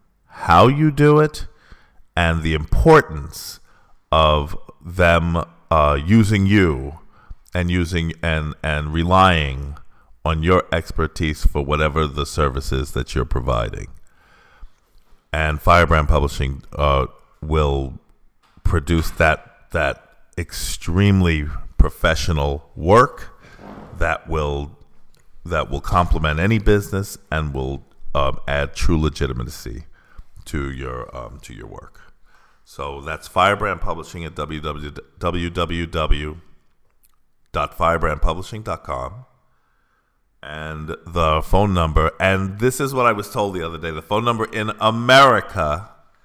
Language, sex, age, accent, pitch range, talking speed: English, male, 40-59, American, 75-90 Hz, 105 wpm